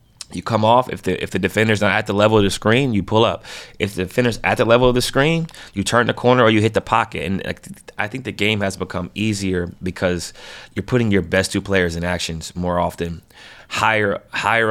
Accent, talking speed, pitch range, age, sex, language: American, 235 wpm, 90-105 Hz, 20-39, male, English